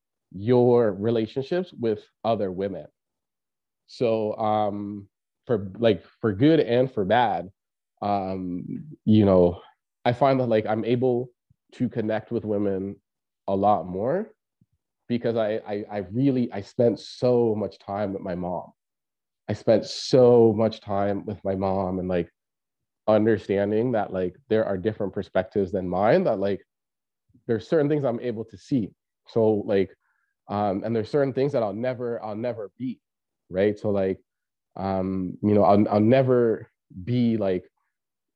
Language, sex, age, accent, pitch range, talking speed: English, male, 30-49, American, 100-120 Hz, 150 wpm